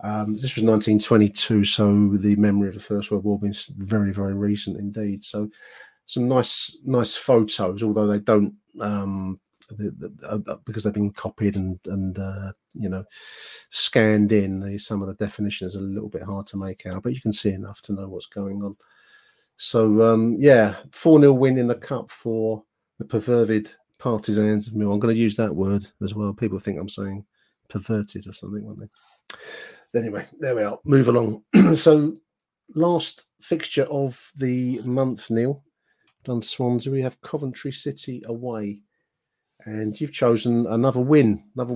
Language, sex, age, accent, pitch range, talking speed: English, male, 40-59, British, 105-125 Hz, 165 wpm